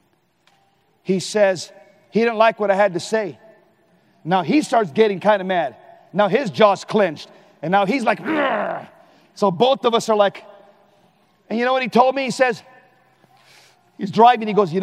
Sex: male